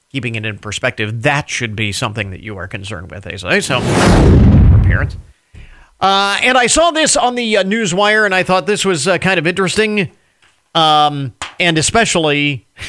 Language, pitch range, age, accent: English, 135-190 Hz, 40-59, American